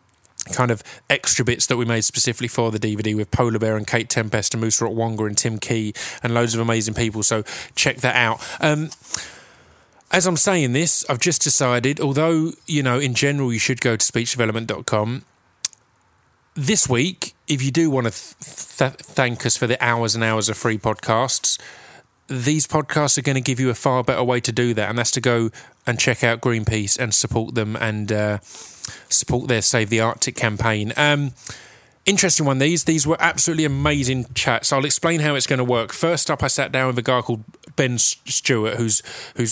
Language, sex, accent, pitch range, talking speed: English, male, British, 115-140 Hz, 200 wpm